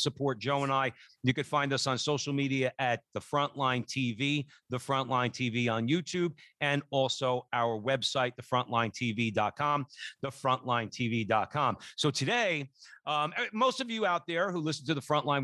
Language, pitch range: English, 125-155 Hz